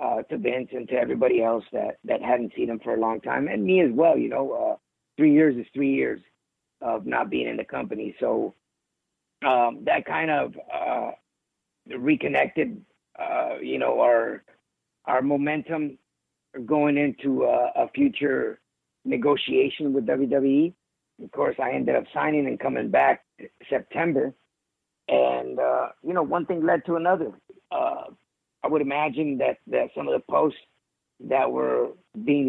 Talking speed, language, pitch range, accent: 160 wpm, English, 130-160 Hz, American